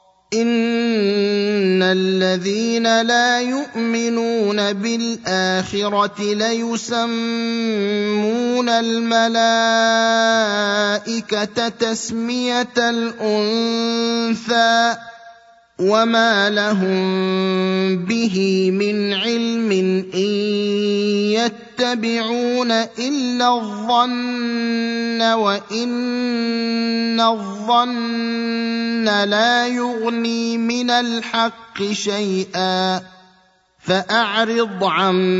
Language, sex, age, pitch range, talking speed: Arabic, male, 30-49, 205-235 Hz, 45 wpm